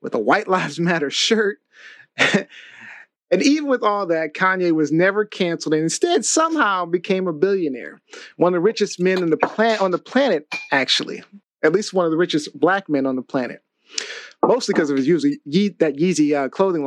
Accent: American